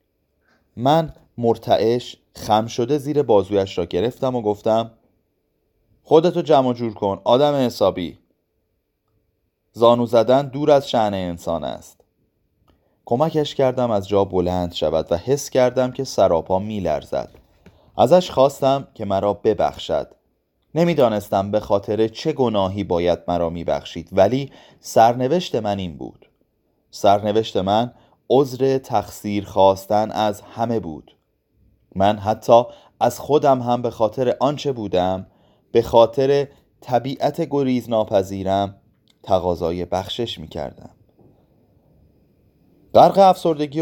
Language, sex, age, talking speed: Persian, male, 30-49, 110 wpm